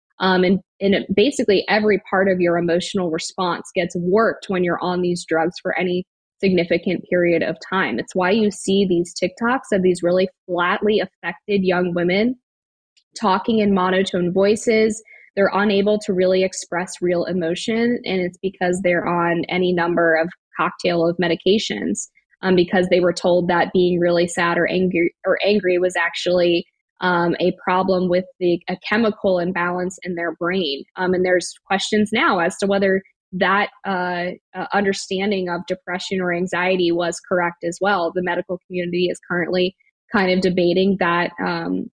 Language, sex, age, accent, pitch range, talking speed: English, female, 10-29, American, 175-195 Hz, 165 wpm